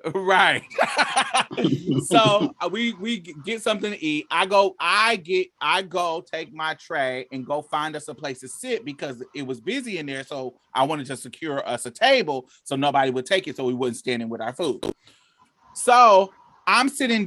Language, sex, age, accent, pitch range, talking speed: English, male, 30-49, American, 150-220 Hz, 190 wpm